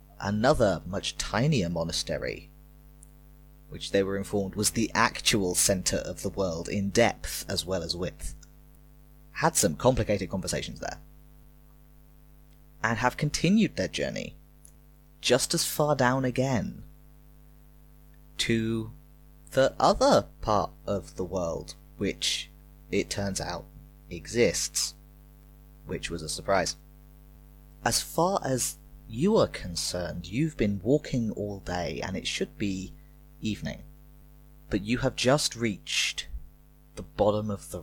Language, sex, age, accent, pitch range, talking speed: English, male, 30-49, British, 85-120 Hz, 120 wpm